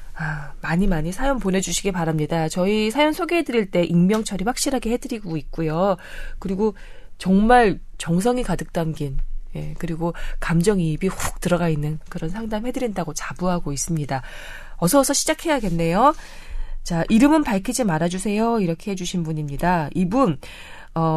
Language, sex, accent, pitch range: Korean, female, native, 160-245 Hz